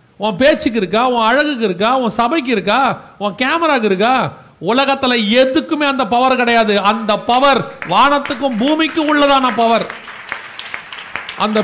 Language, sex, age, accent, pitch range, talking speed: Tamil, male, 40-59, native, 160-235 Hz, 125 wpm